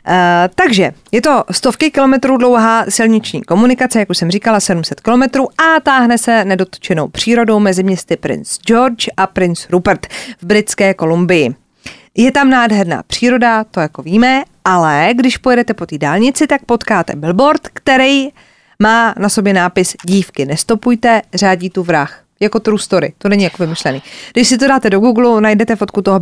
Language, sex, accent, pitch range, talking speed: Czech, female, native, 185-245 Hz, 160 wpm